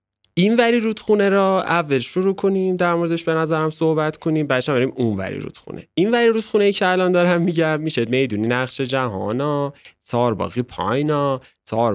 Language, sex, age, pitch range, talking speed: Persian, male, 30-49, 105-160 Hz, 175 wpm